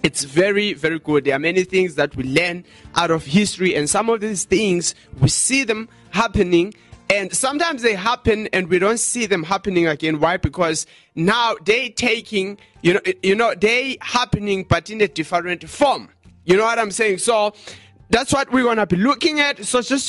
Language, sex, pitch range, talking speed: English, male, 150-200 Hz, 195 wpm